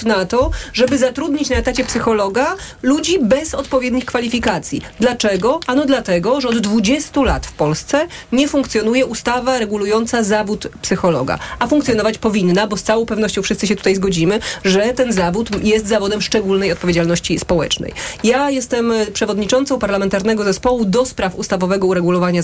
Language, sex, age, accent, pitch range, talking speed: Polish, female, 30-49, native, 195-255 Hz, 145 wpm